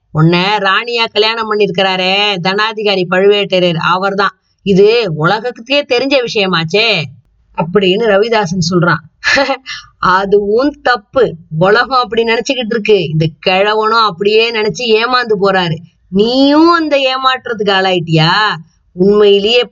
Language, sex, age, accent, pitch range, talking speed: Tamil, female, 20-39, native, 180-240 Hz, 95 wpm